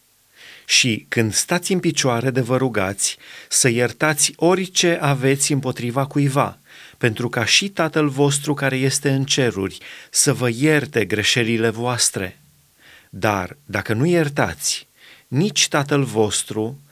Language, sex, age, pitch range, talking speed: Romanian, male, 30-49, 115-145 Hz, 125 wpm